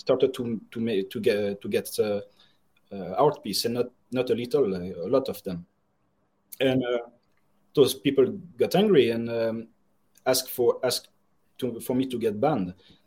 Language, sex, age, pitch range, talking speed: English, male, 30-49, 110-145 Hz, 175 wpm